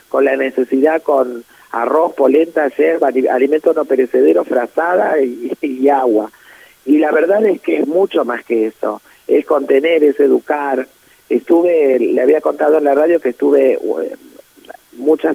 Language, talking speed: Spanish, 150 wpm